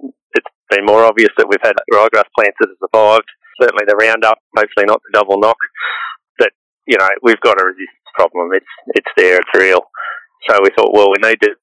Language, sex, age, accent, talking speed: English, male, 30-49, Australian, 205 wpm